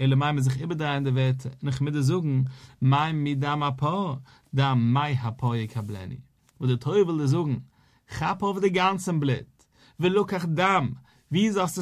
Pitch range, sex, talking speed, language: 130-160 Hz, male, 100 wpm, English